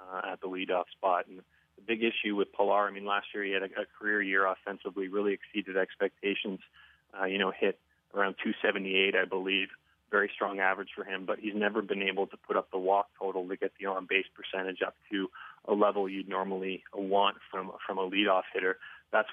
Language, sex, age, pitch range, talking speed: English, male, 30-49, 95-110 Hz, 210 wpm